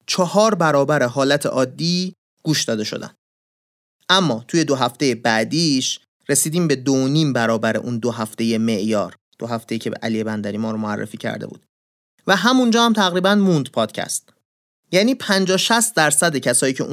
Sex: male